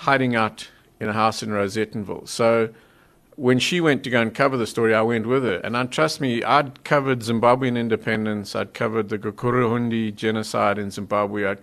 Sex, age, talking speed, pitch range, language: male, 50-69, 185 wpm, 110-140 Hz, English